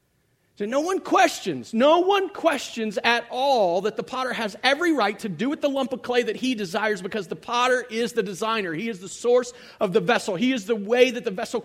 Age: 40-59